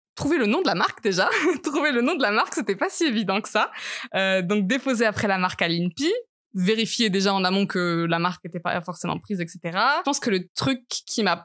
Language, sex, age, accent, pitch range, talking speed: French, female, 20-39, French, 175-210 Hz, 240 wpm